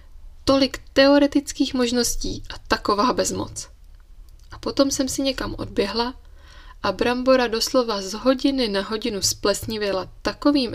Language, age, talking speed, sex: Czech, 20-39, 115 wpm, female